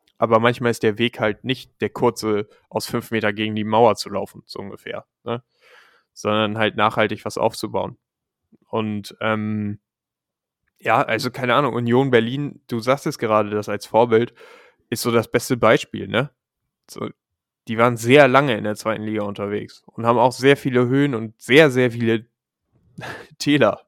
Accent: German